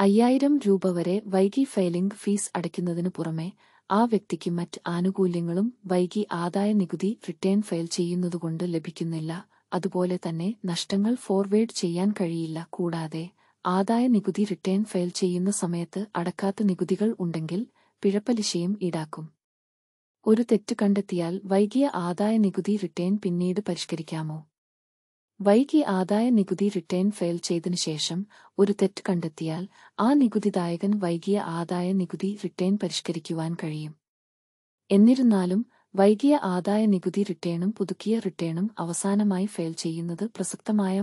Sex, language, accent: female, Malayalam, native